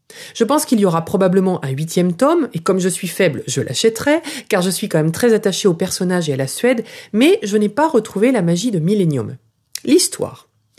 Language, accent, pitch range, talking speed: French, French, 165-230 Hz, 215 wpm